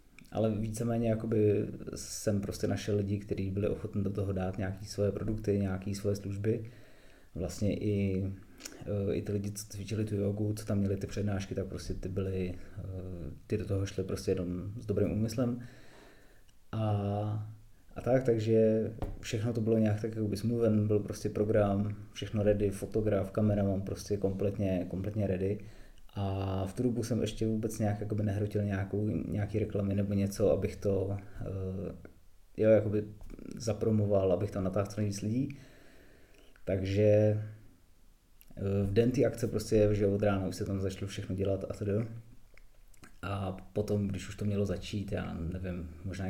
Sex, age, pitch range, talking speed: male, 30-49, 95-105 Hz, 160 wpm